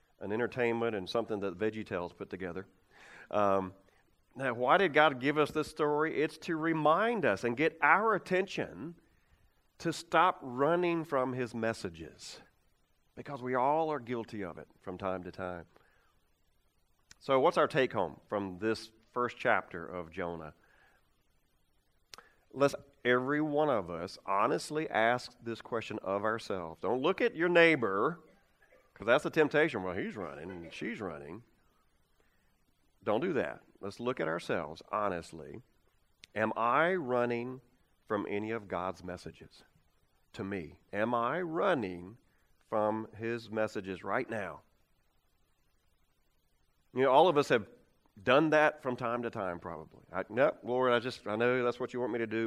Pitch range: 95-140 Hz